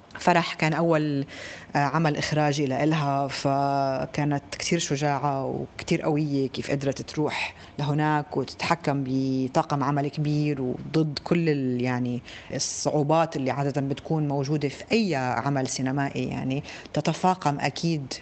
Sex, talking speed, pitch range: female, 115 wpm, 135-160 Hz